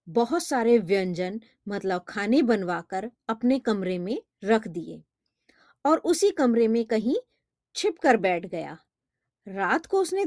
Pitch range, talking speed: 195-280 Hz, 130 wpm